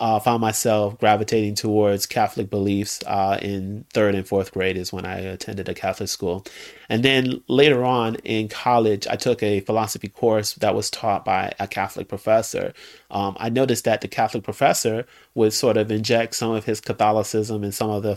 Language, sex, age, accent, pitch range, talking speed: English, male, 30-49, American, 105-120 Hz, 190 wpm